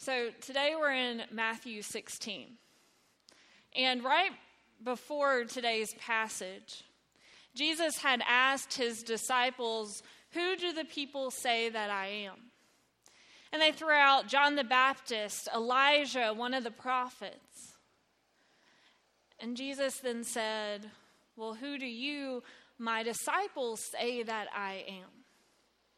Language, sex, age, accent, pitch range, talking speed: English, female, 20-39, American, 215-265 Hz, 115 wpm